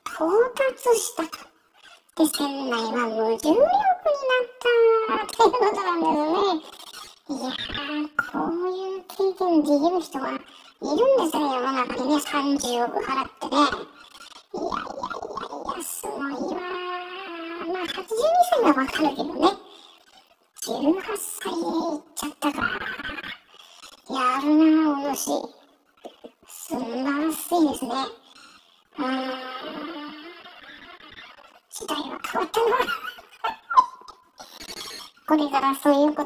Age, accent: 10-29, American